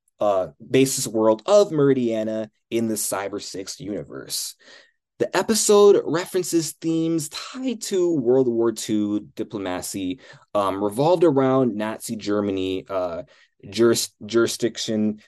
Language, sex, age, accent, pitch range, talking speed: English, male, 20-39, American, 105-135 Hz, 105 wpm